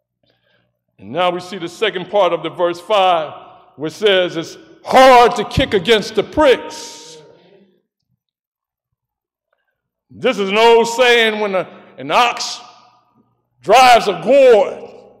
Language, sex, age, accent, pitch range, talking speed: English, male, 60-79, American, 200-300 Hz, 120 wpm